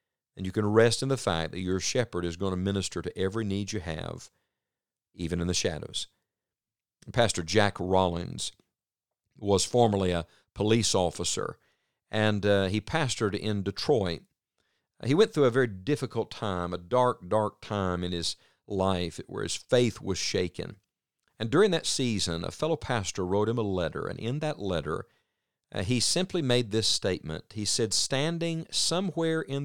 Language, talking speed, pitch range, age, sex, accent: English, 165 wpm, 95-120 Hz, 50-69, male, American